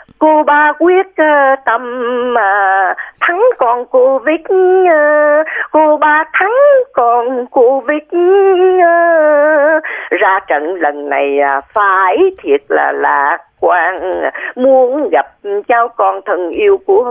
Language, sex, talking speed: Vietnamese, female, 110 wpm